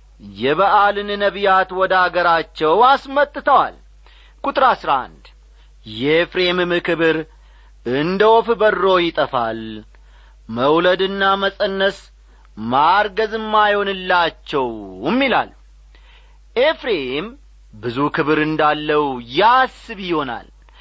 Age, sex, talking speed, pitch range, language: 40-59, male, 65 wpm, 140-210 Hz, Amharic